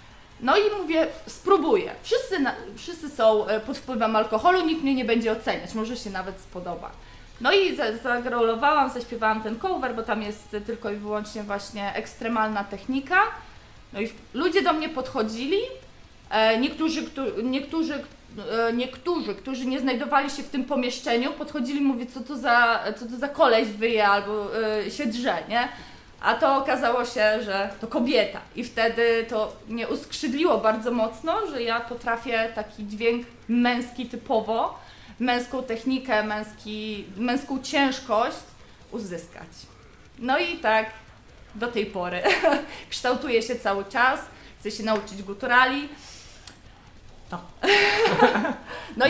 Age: 20-39